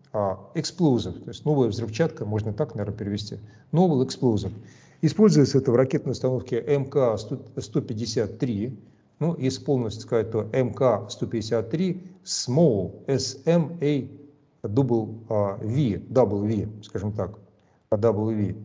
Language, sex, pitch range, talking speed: Russian, male, 110-140 Hz, 85 wpm